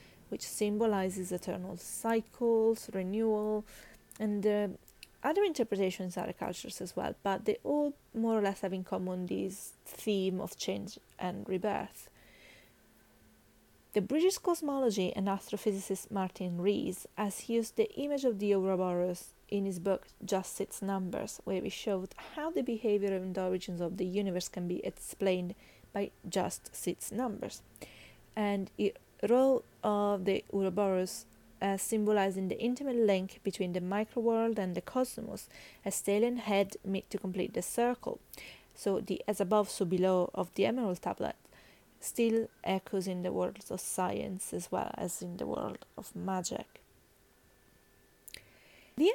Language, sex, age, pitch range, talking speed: English, female, 20-39, 190-225 Hz, 145 wpm